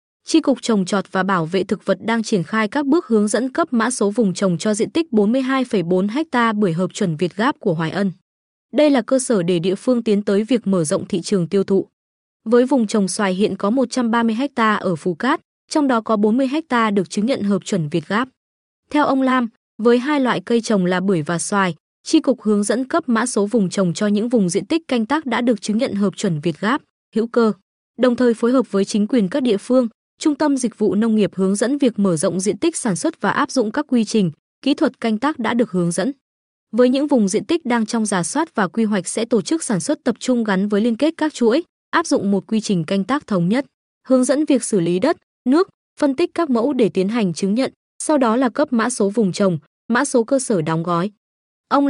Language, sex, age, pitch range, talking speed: Vietnamese, female, 20-39, 195-260 Hz, 250 wpm